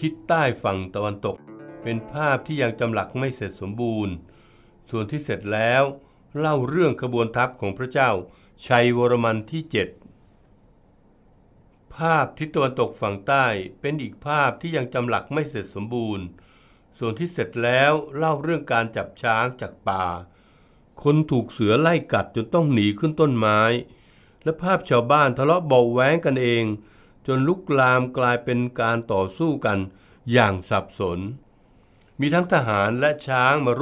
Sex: male